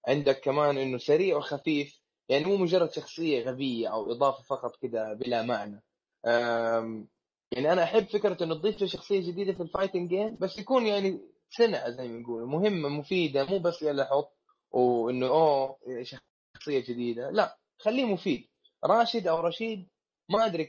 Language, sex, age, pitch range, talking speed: Arabic, male, 20-39, 130-180 Hz, 150 wpm